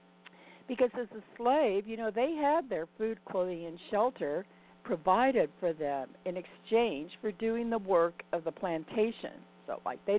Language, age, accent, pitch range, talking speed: English, 50-69, American, 140-215 Hz, 165 wpm